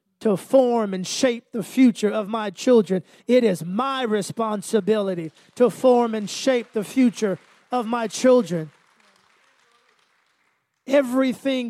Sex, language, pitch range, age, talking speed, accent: male, English, 195-240 Hz, 30-49, 120 wpm, American